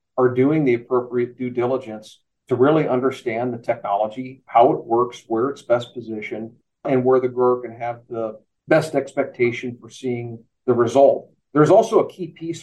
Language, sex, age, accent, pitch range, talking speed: English, male, 50-69, American, 120-140 Hz, 170 wpm